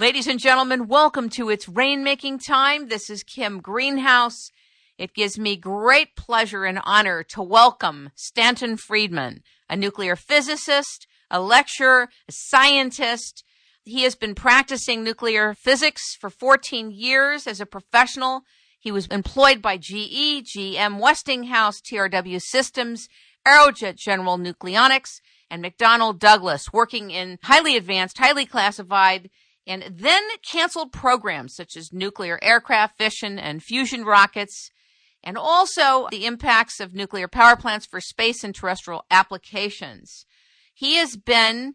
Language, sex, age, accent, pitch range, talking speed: English, female, 50-69, American, 200-265 Hz, 130 wpm